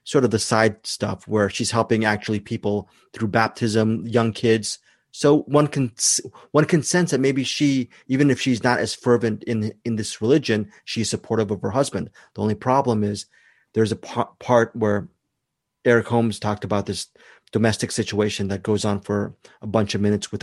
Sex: male